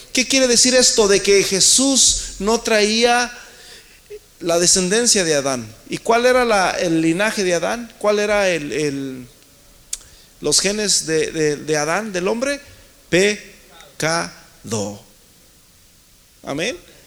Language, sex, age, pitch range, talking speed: Spanish, male, 40-59, 190-250 Hz, 125 wpm